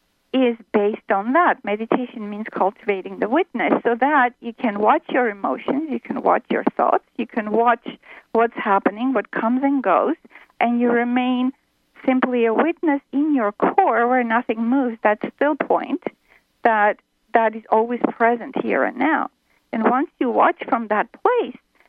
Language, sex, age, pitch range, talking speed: English, female, 50-69, 225-290 Hz, 165 wpm